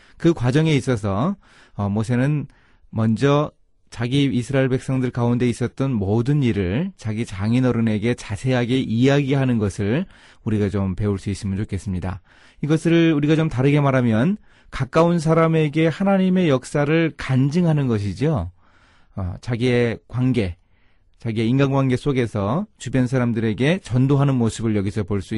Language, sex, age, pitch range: Korean, male, 30-49, 105-150 Hz